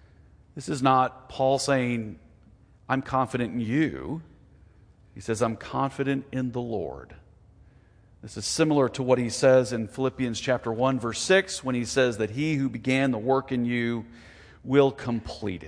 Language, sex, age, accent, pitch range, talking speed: English, male, 40-59, American, 95-120 Hz, 160 wpm